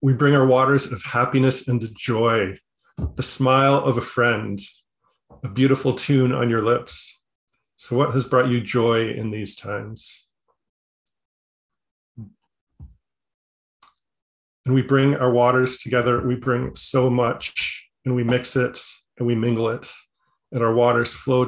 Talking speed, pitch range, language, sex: 140 wpm, 115-130 Hz, English, male